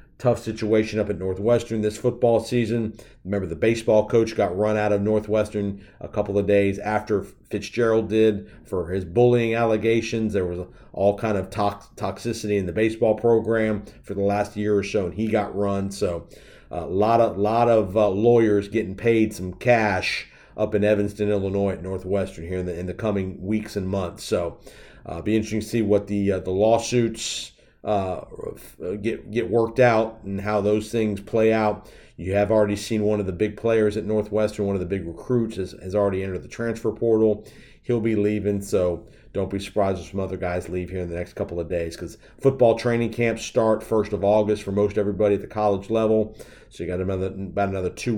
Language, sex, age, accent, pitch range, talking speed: English, male, 50-69, American, 100-115 Hz, 200 wpm